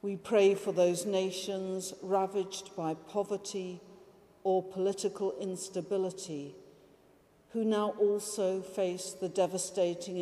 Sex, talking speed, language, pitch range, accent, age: female, 100 wpm, English, 170-195 Hz, British, 50-69